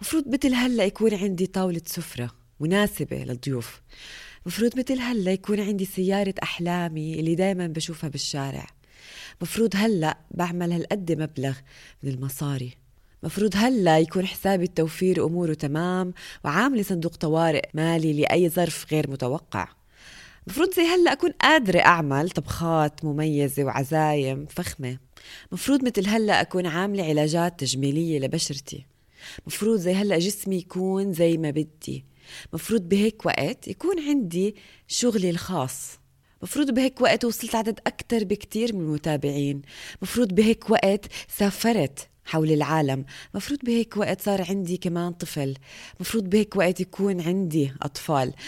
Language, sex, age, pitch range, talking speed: Arabic, female, 20-39, 150-205 Hz, 125 wpm